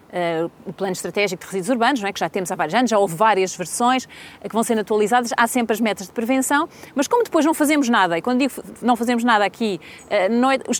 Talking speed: 255 wpm